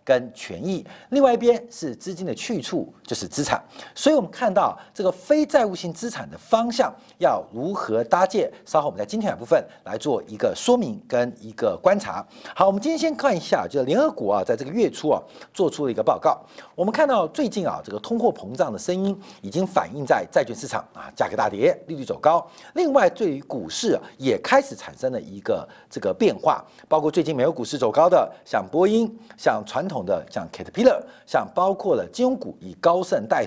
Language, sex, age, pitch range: Chinese, male, 50-69, 170-275 Hz